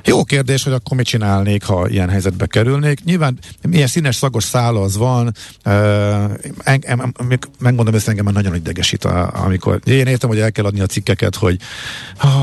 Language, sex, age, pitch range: Hungarian, male, 50-69, 95-125 Hz